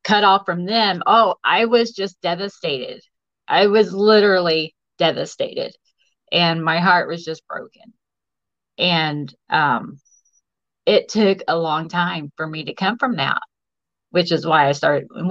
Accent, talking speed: American, 145 wpm